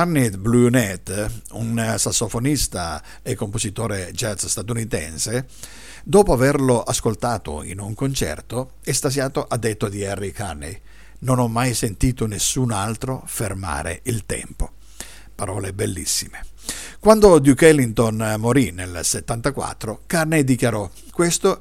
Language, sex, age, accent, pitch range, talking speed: Italian, male, 50-69, native, 105-135 Hz, 110 wpm